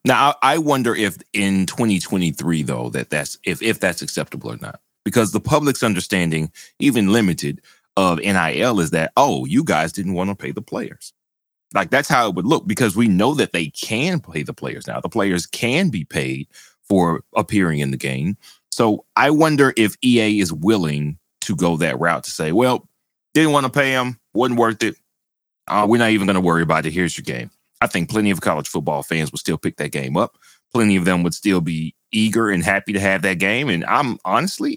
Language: English